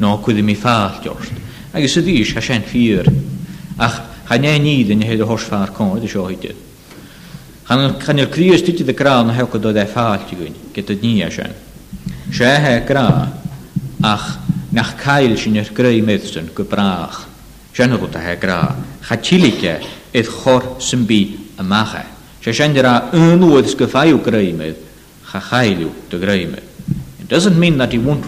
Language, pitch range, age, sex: English, 105-135 Hz, 50-69, male